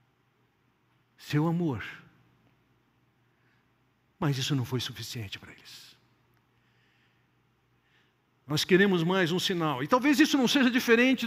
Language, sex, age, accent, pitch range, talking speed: Portuguese, male, 60-79, Brazilian, 165-270 Hz, 105 wpm